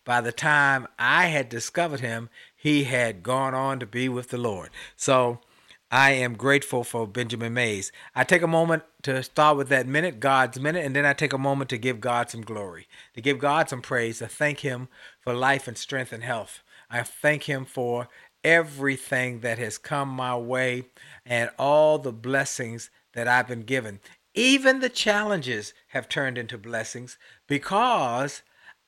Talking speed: 175 wpm